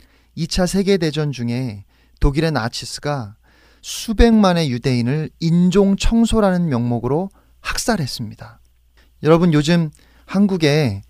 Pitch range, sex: 120-185 Hz, male